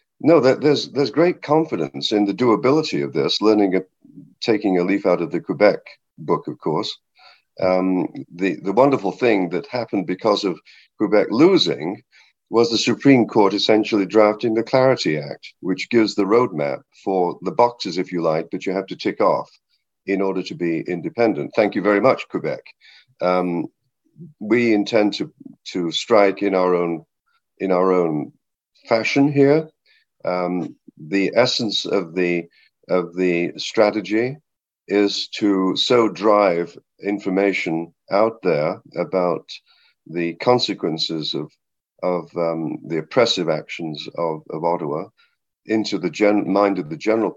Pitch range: 90-115 Hz